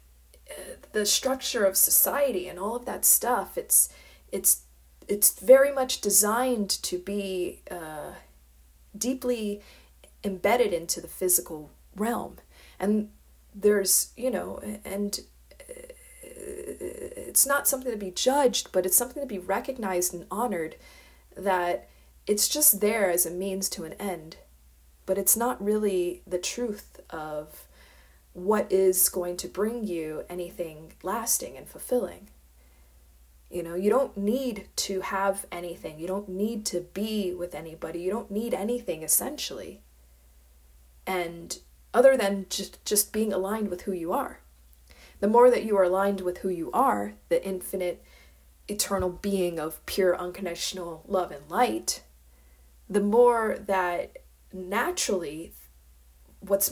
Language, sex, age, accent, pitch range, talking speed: English, female, 40-59, American, 160-210 Hz, 135 wpm